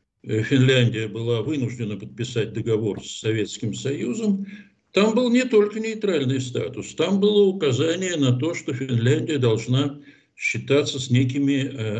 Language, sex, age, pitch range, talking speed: Russian, male, 60-79, 120-155 Hz, 130 wpm